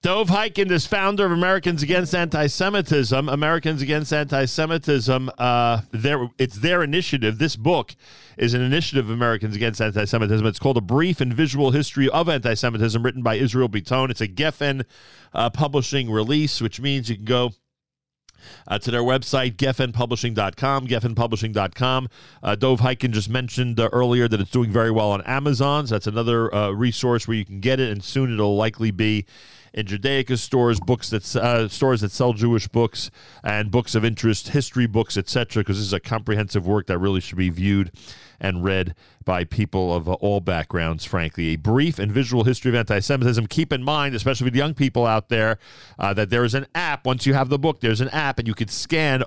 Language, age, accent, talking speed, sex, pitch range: English, 40-59, American, 195 wpm, male, 110-140 Hz